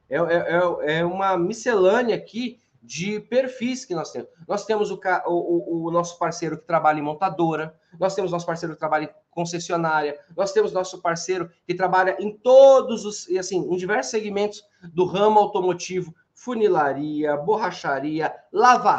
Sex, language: male, Portuguese